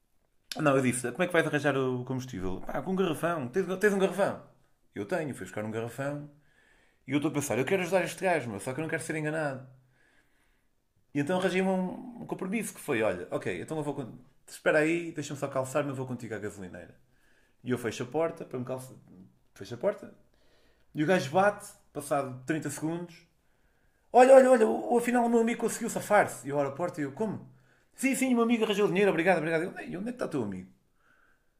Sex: male